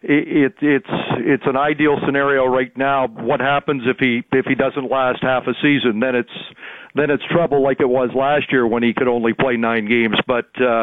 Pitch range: 125-145 Hz